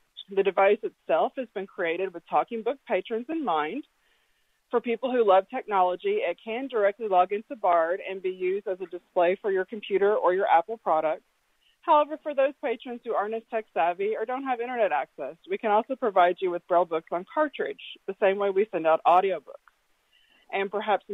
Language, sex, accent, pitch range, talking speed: English, female, American, 180-235 Hz, 195 wpm